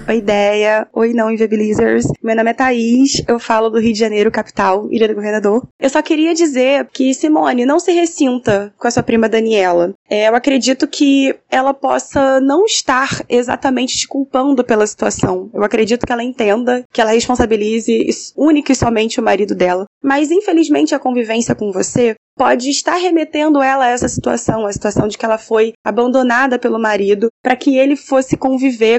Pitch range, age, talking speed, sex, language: 225-285 Hz, 20-39, 175 wpm, female, Portuguese